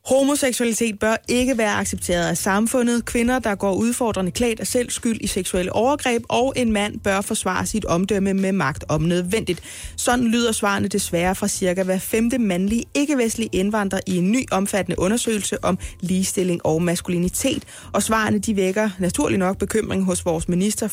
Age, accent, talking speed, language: 20-39, native, 165 wpm, Danish